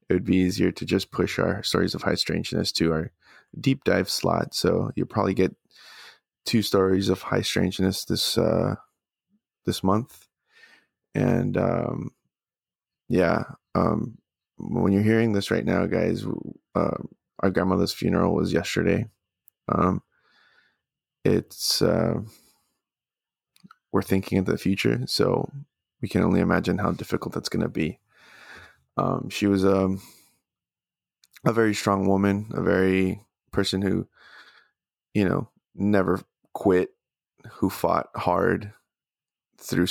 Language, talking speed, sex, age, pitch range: English, 130 wpm, male, 20-39, 90-105 Hz